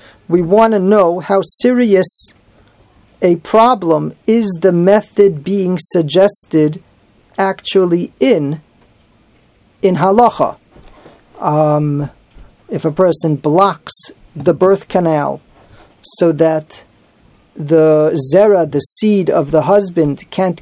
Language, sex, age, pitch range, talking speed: English, male, 40-59, 155-200 Hz, 100 wpm